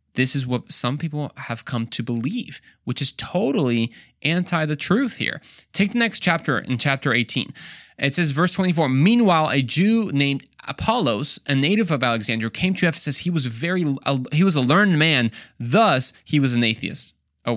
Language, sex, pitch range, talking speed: English, male, 125-175 Hz, 185 wpm